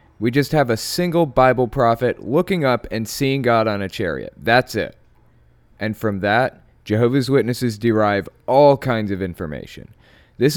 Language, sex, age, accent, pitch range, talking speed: English, male, 20-39, American, 100-130 Hz, 160 wpm